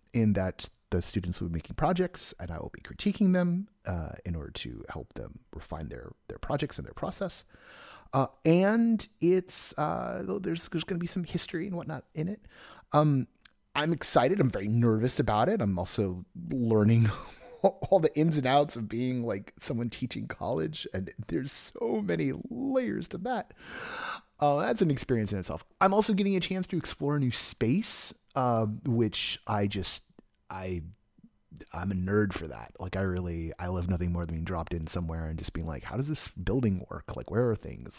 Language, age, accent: English, 30-49, American